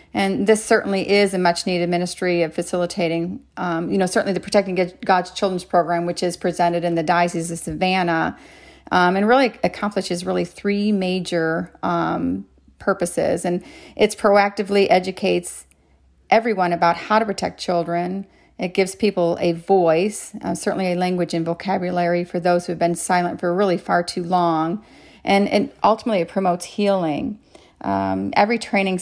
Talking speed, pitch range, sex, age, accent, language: 160 wpm, 175-195 Hz, female, 40-59, American, English